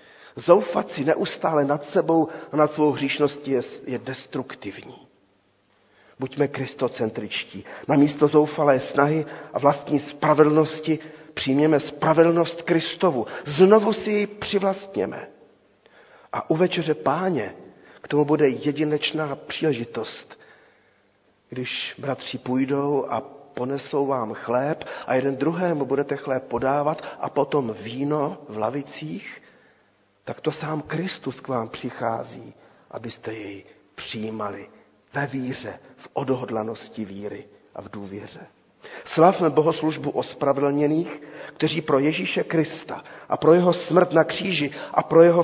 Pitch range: 130-160 Hz